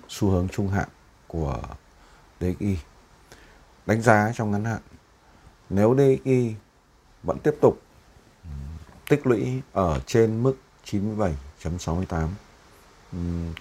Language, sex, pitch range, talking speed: Vietnamese, male, 80-105 Hz, 95 wpm